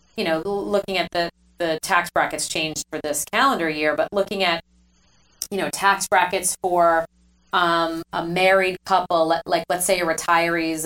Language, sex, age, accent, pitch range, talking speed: English, female, 30-49, American, 155-185 Hz, 170 wpm